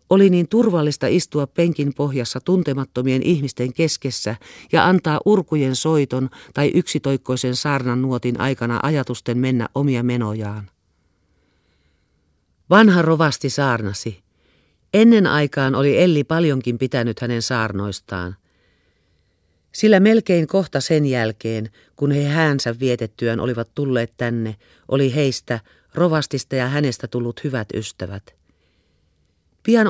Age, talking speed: 40-59, 110 wpm